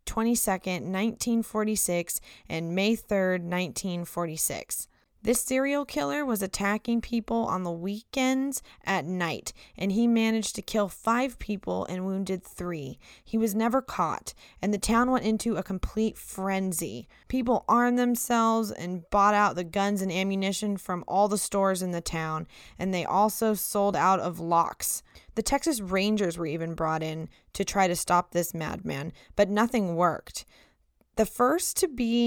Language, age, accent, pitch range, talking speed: English, 20-39, American, 180-225 Hz, 155 wpm